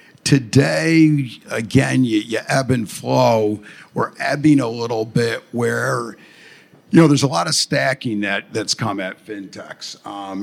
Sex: male